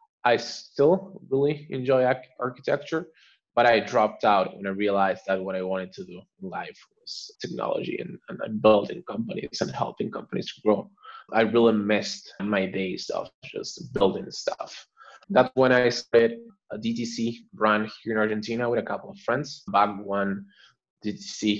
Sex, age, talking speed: male, 20-39, 160 wpm